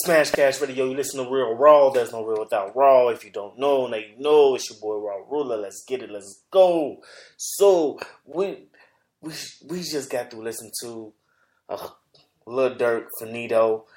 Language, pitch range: English, 115-140 Hz